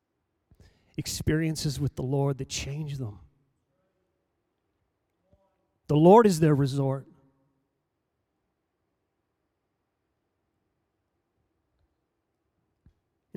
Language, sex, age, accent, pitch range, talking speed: English, male, 30-49, American, 135-195 Hz, 60 wpm